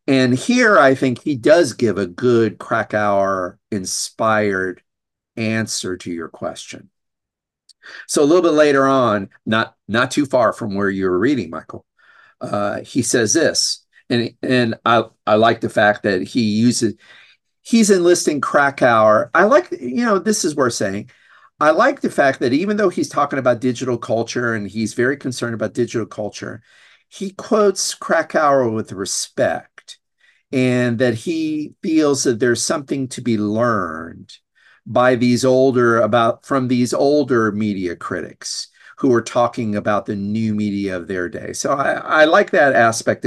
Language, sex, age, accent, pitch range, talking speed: English, male, 50-69, American, 105-135 Hz, 160 wpm